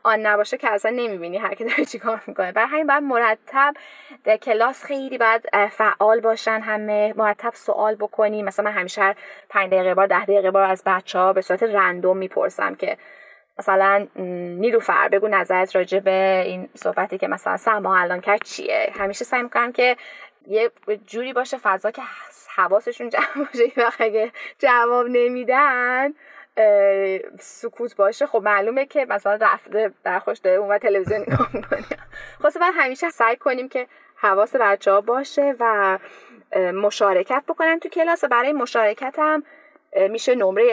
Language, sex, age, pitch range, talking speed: Persian, female, 10-29, 200-260 Hz, 150 wpm